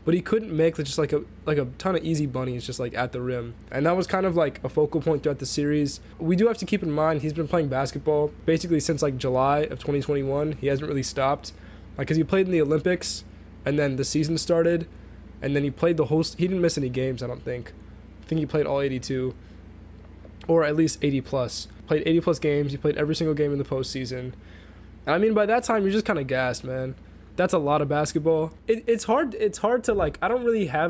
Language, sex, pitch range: English, male, 135-165 Hz